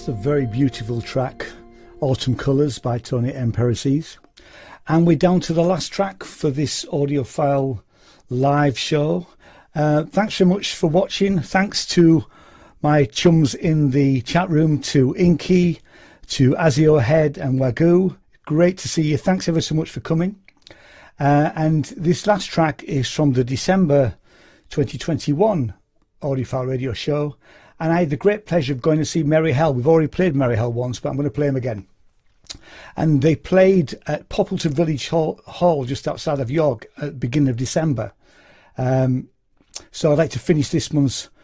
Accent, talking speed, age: British, 165 wpm, 60-79